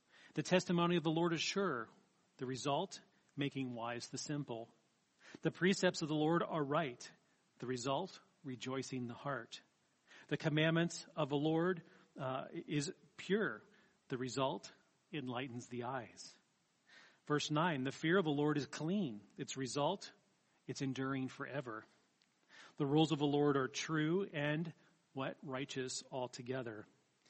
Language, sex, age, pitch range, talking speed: English, male, 40-59, 130-165 Hz, 140 wpm